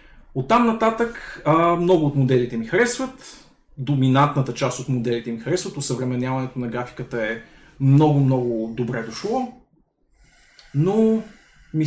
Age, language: 30-49, Bulgarian